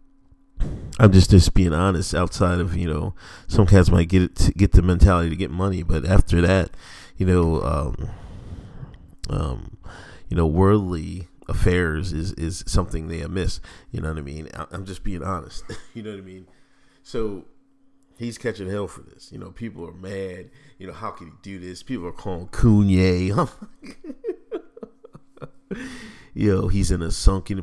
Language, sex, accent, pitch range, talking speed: English, male, American, 90-115 Hz, 170 wpm